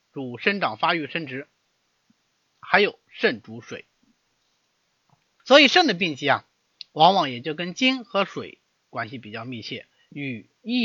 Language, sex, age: Chinese, male, 30-49